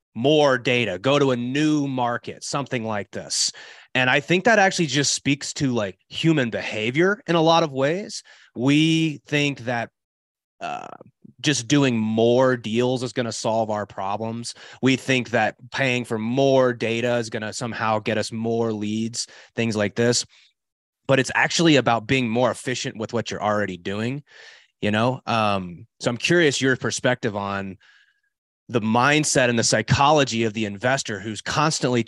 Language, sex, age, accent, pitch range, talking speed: English, male, 30-49, American, 115-150 Hz, 165 wpm